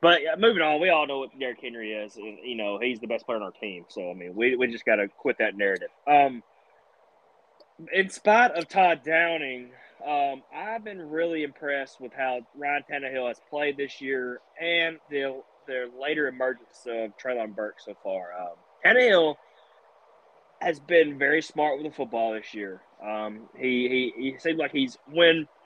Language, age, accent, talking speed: English, 20-39, American, 190 wpm